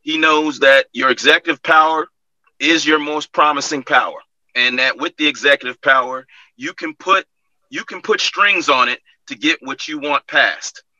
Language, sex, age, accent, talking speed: English, male, 30-49, American, 175 wpm